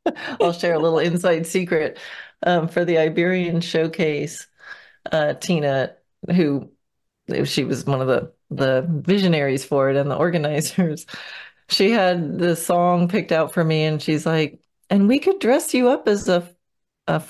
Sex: female